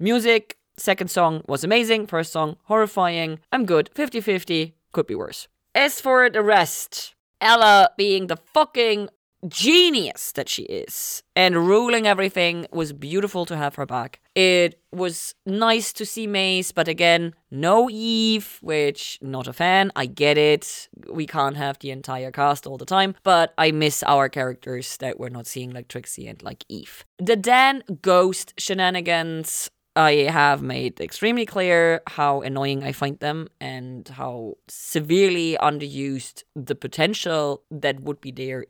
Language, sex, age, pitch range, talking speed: English, female, 30-49, 140-195 Hz, 155 wpm